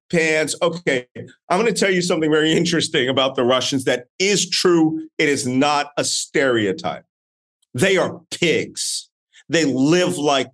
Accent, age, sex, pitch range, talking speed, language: American, 40-59, male, 145-200 Hz, 155 wpm, English